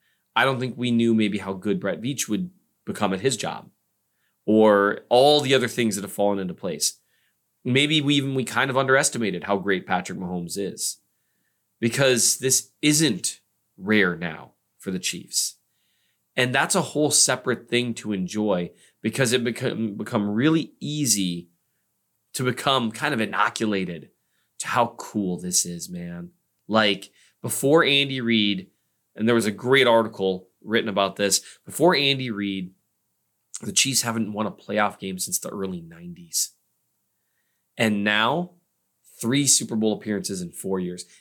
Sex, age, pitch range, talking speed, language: male, 20-39, 105-140 Hz, 155 wpm, English